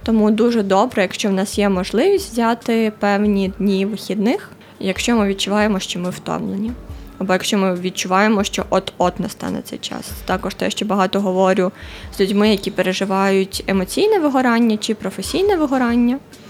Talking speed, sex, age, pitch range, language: 155 wpm, female, 20-39, 195-235 Hz, Ukrainian